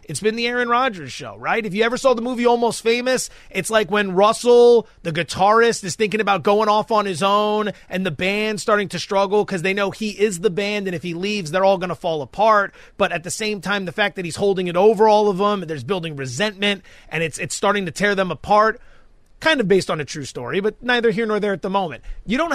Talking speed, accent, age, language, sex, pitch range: 255 wpm, American, 30-49, English, male, 190-235 Hz